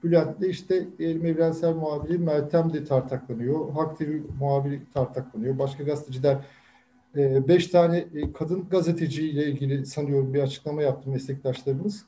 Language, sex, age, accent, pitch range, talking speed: Turkish, male, 50-69, native, 140-175 Hz, 115 wpm